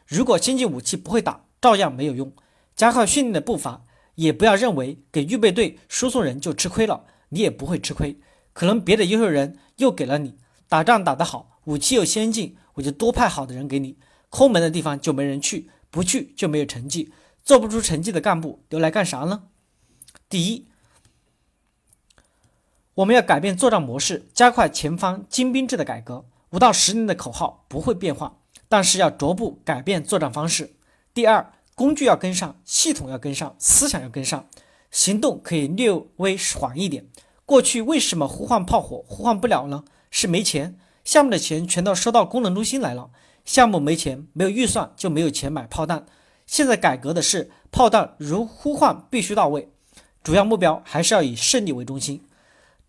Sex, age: male, 40-59